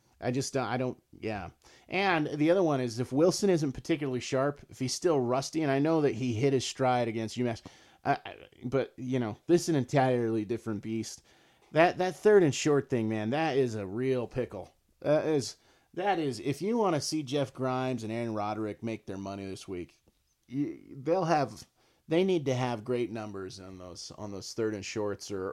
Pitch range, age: 105-135 Hz, 30-49